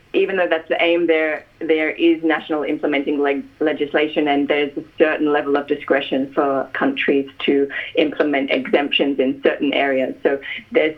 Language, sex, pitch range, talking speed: English, female, 145-165 Hz, 160 wpm